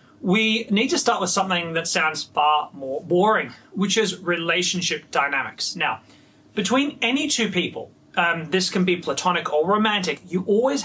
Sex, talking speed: male, 160 wpm